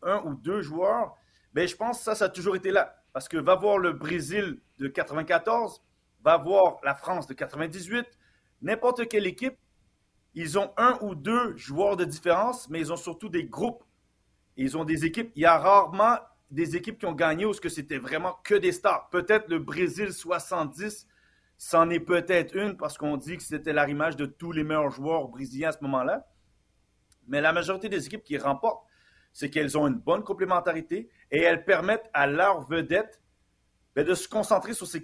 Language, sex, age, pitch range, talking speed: French, male, 40-59, 155-210 Hz, 195 wpm